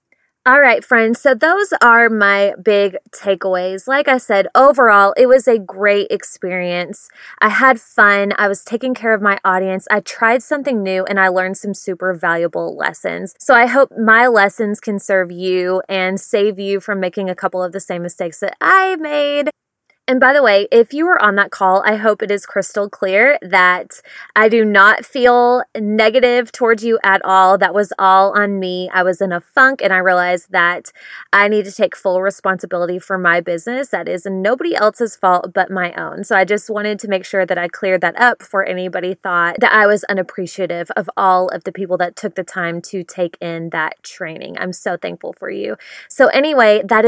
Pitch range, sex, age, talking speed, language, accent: 185-225 Hz, female, 20-39, 205 wpm, English, American